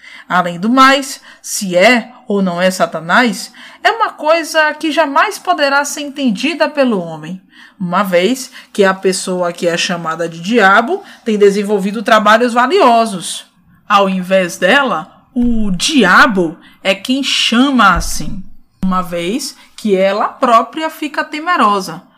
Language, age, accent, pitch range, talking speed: Portuguese, 20-39, Brazilian, 185-265 Hz, 135 wpm